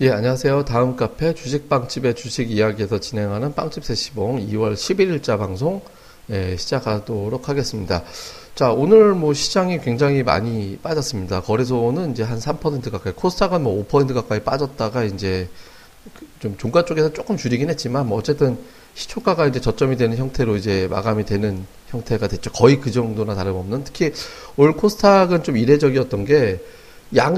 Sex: male